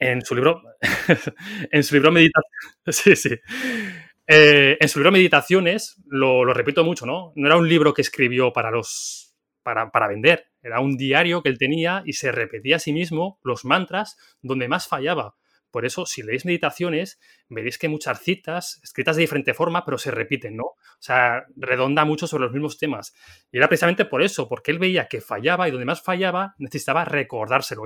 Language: Spanish